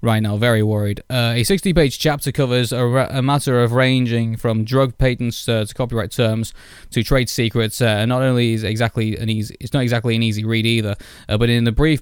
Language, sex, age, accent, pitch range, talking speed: English, male, 20-39, British, 110-130 Hz, 220 wpm